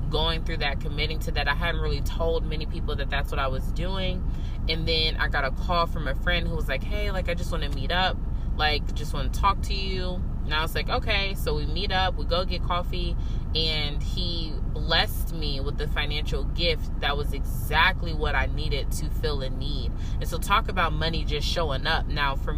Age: 20-39